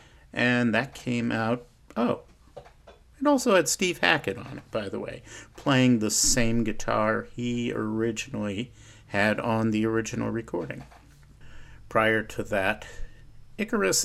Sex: male